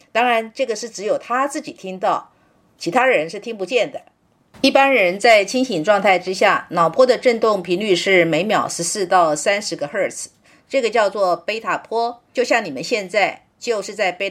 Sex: female